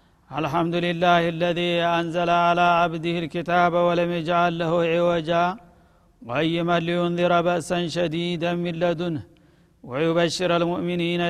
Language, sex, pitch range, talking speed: Amharic, male, 170-175 Hz, 100 wpm